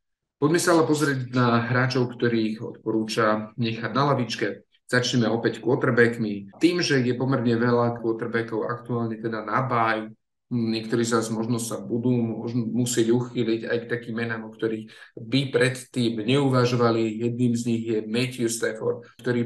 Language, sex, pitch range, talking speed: Slovak, male, 110-120 Hz, 150 wpm